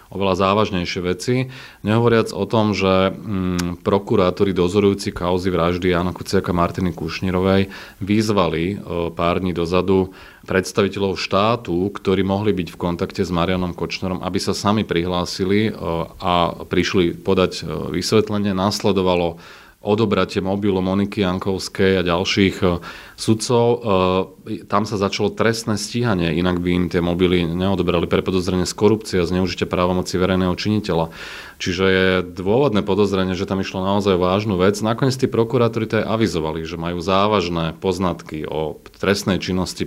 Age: 30-49